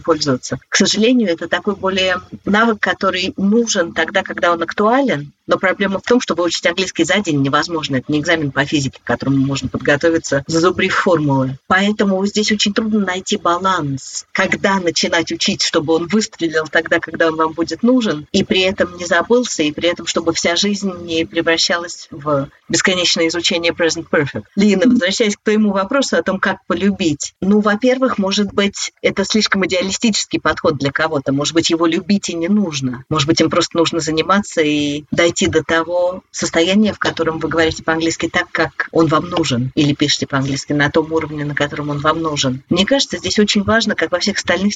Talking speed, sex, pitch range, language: 180 wpm, female, 155-195 Hz, Russian